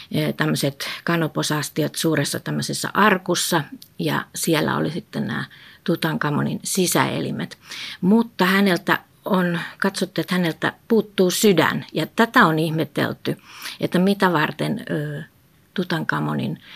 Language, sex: Finnish, female